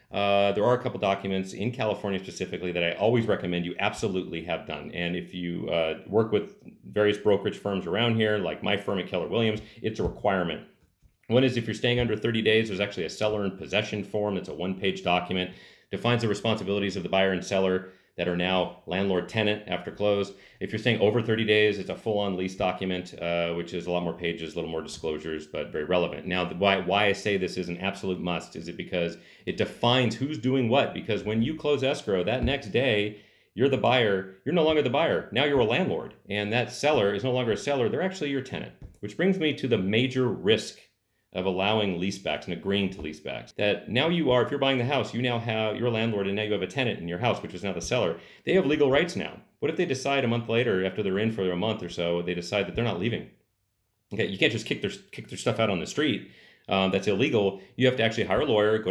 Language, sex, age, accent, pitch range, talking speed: English, male, 40-59, American, 90-115 Hz, 245 wpm